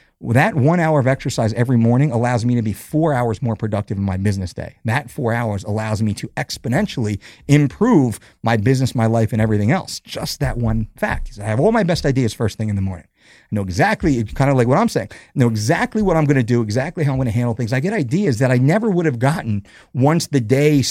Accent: American